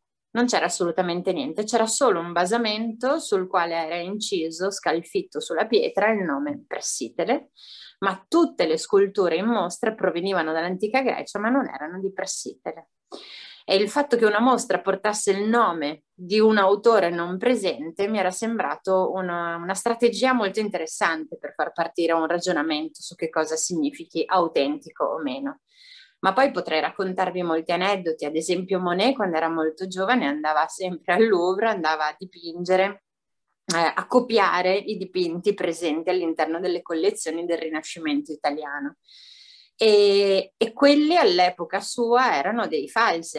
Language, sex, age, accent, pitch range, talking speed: Italian, female, 30-49, native, 170-235 Hz, 145 wpm